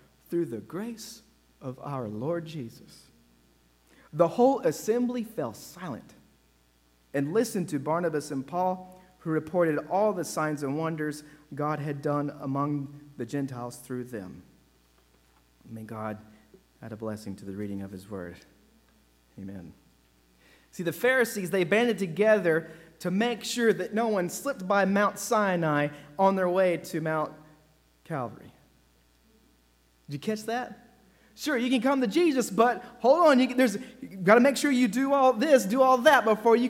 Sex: male